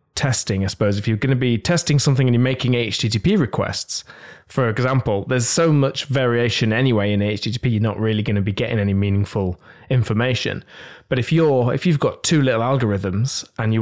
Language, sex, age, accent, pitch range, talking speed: English, male, 20-39, British, 110-135 Hz, 195 wpm